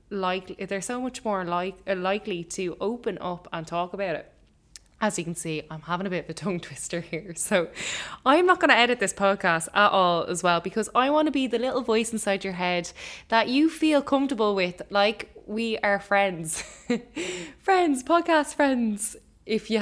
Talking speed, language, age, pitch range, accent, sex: 195 wpm, English, 10-29, 185-235 Hz, Irish, female